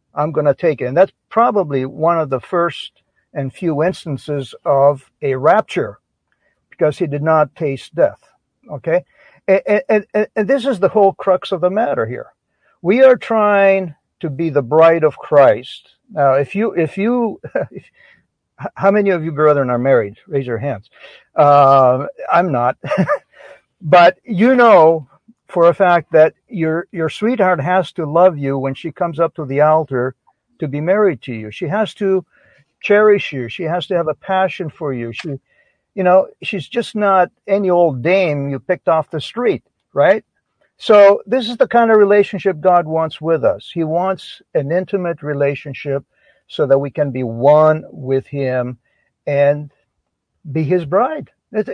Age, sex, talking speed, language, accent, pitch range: 60-79, male, 170 wpm, English, American, 145-195 Hz